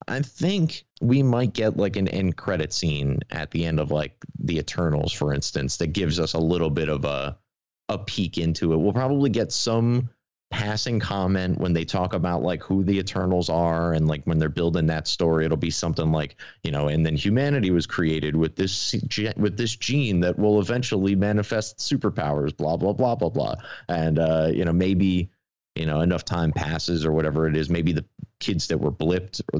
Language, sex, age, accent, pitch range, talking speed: English, male, 30-49, American, 80-100 Hz, 205 wpm